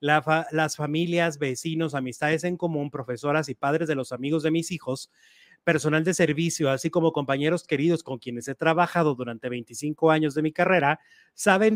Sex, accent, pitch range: male, Mexican, 150-185 Hz